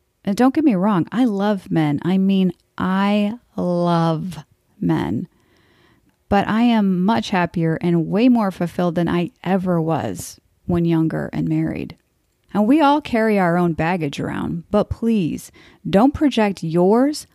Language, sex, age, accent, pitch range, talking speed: English, female, 30-49, American, 170-215 Hz, 150 wpm